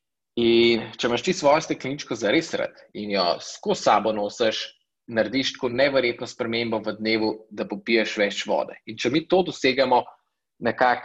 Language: English